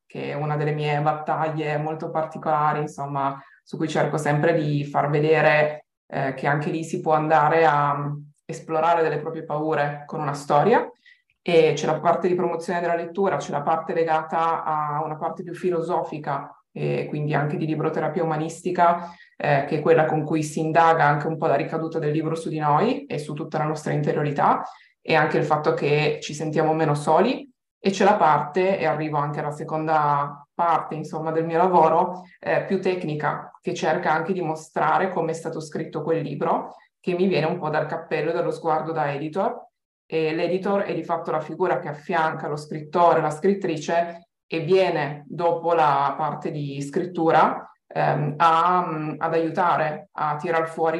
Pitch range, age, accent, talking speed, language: 150-170 Hz, 20-39, native, 180 wpm, Italian